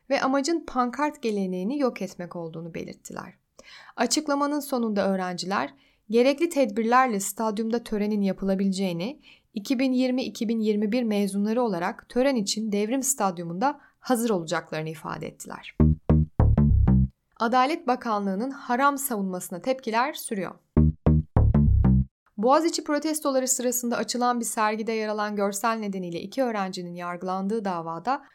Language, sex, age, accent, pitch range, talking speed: Turkish, female, 10-29, native, 195-270 Hz, 100 wpm